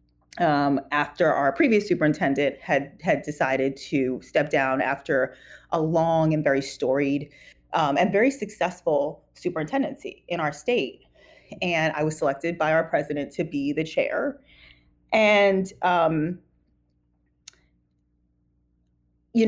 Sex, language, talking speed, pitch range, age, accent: female, English, 120 wpm, 140-180 Hz, 30-49, American